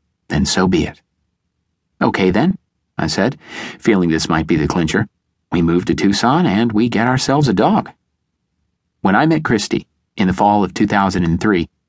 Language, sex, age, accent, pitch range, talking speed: English, male, 40-59, American, 85-110 Hz, 165 wpm